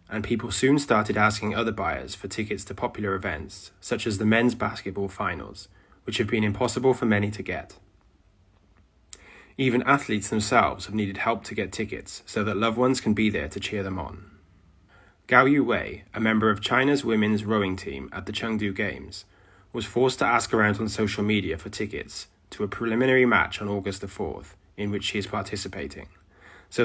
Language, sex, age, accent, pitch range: Chinese, male, 20-39, British, 95-115 Hz